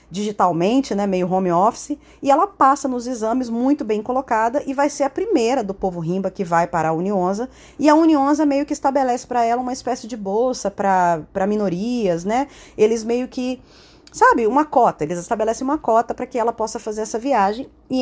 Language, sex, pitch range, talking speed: Portuguese, female, 205-275 Hz, 195 wpm